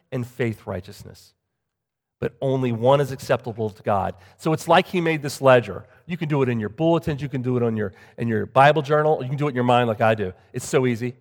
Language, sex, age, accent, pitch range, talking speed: English, male, 40-59, American, 105-145 Hz, 255 wpm